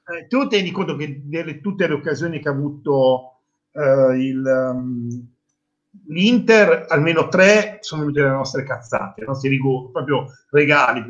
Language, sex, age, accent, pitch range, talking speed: Italian, male, 50-69, native, 140-195 Hz, 150 wpm